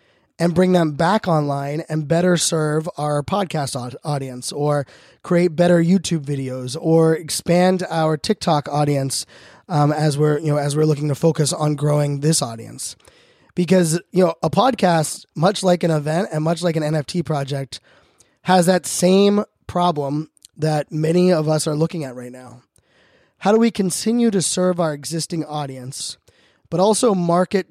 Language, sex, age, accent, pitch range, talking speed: English, male, 20-39, American, 145-180 Hz, 160 wpm